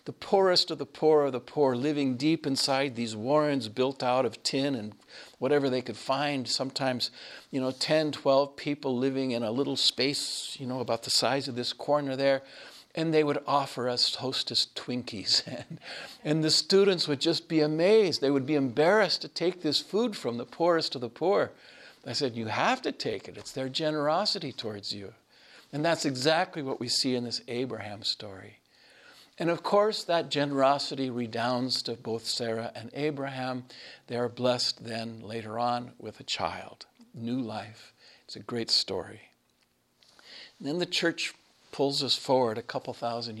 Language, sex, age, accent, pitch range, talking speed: English, male, 50-69, American, 115-145 Hz, 175 wpm